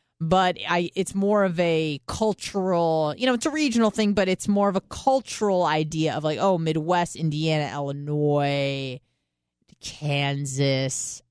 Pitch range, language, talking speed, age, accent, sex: 135-185 Hz, English, 145 wpm, 30-49, American, female